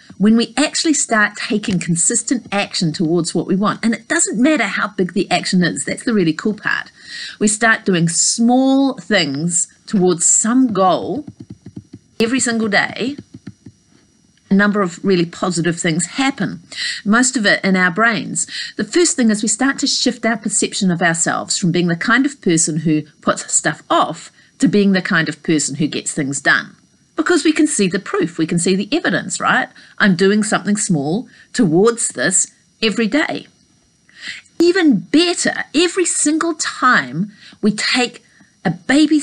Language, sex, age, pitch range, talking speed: English, female, 40-59, 185-255 Hz, 170 wpm